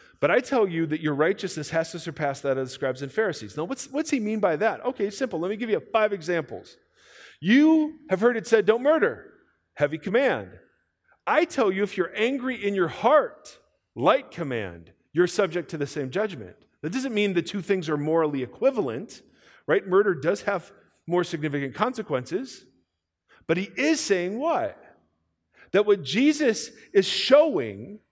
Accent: American